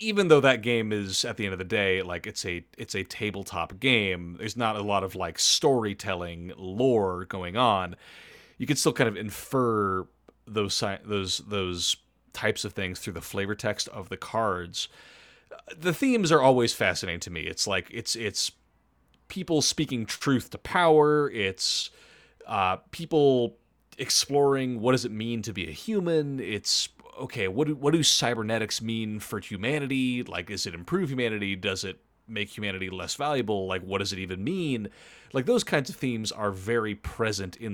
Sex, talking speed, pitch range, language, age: male, 175 wpm, 95-130 Hz, English, 30-49